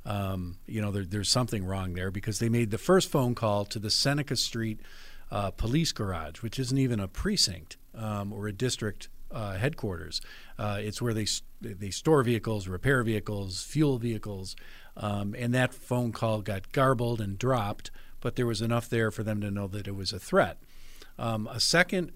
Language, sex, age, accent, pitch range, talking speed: English, male, 50-69, American, 100-120 Hz, 190 wpm